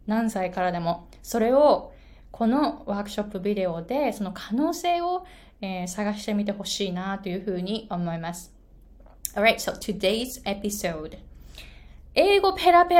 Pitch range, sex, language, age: 180-275 Hz, female, Japanese, 20-39